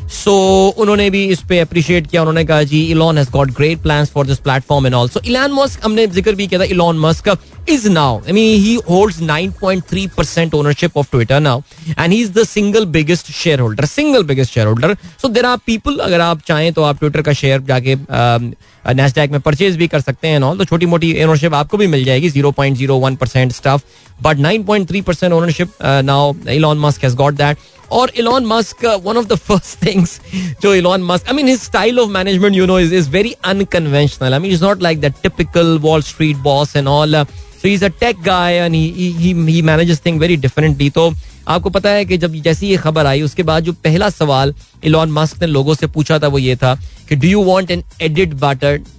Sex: male